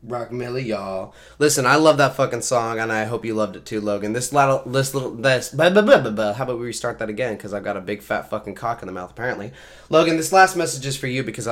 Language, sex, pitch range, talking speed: English, male, 110-145 Hz, 275 wpm